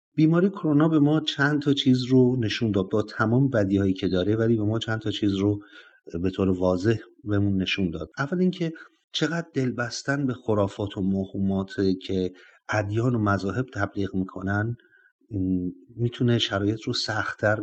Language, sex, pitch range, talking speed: Persian, male, 100-130 Hz, 160 wpm